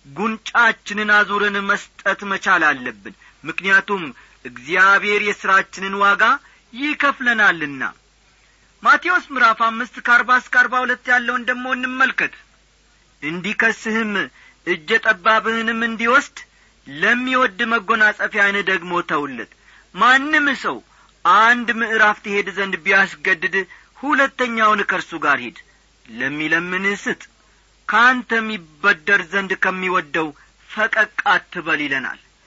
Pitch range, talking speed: 195-240 Hz, 85 wpm